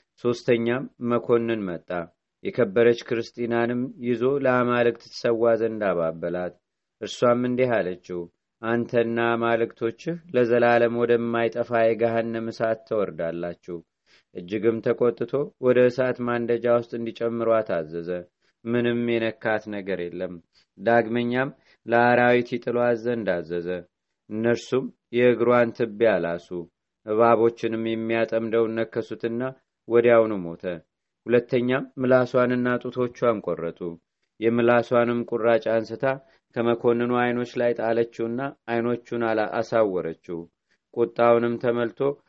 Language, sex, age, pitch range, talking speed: Amharic, male, 30-49, 110-120 Hz, 85 wpm